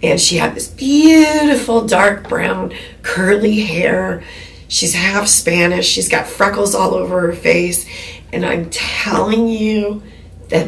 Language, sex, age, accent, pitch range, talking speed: English, female, 40-59, American, 165-270 Hz, 135 wpm